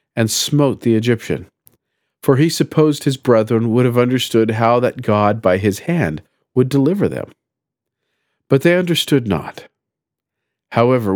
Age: 50-69